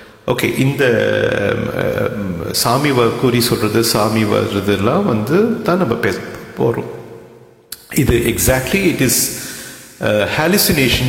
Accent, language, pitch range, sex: Indian, English, 105-140 Hz, male